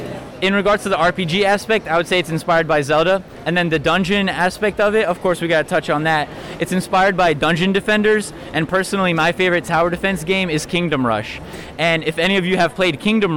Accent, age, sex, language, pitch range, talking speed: American, 20-39, male, English, 155-190 Hz, 230 wpm